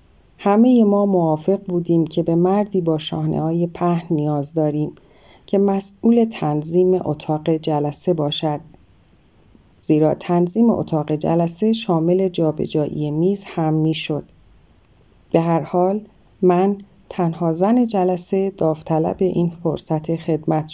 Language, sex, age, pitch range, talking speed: English, female, 30-49, 150-185 Hz, 115 wpm